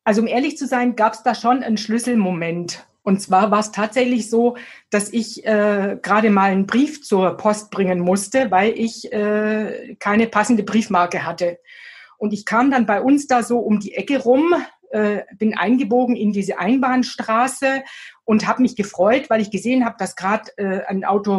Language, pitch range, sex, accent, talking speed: German, 200-250 Hz, female, German, 185 wpm